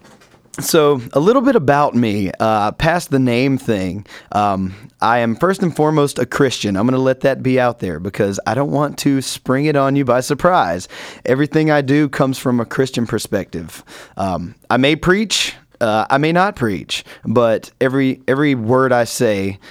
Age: 30-49